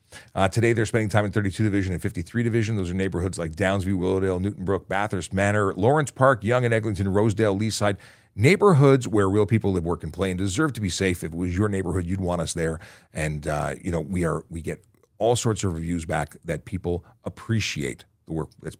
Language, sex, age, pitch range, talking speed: English, male, 40-59, 90-115 Hz, 215 wpm